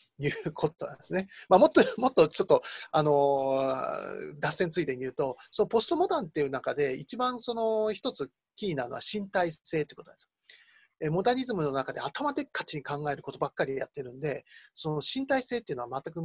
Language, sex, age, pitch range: Japanese, male, 30-49, 155-255 Hz